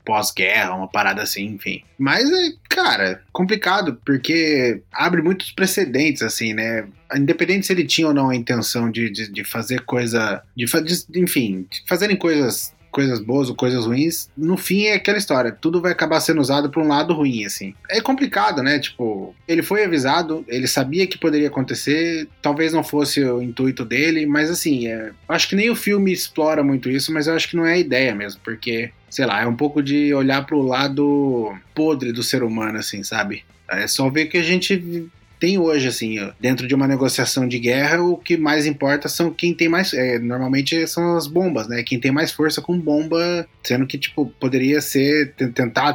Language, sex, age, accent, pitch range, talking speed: Portuguese, male, 20-39, Brazilian, 125-165 Hz, 195 wpm